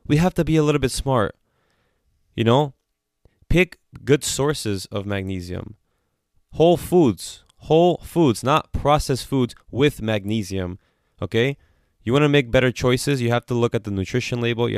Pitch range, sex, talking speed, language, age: 100-130 Hz, male, 160 wpm, English, 20-39